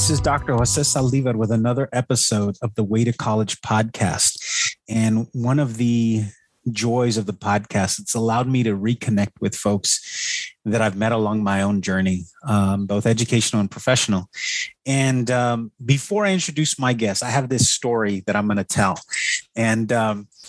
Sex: male